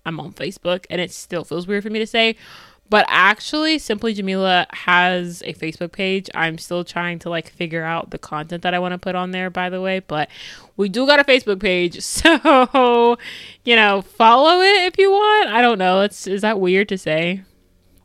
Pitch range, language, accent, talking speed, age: 170-225 Hz, English, American, 210 wpm, 20-39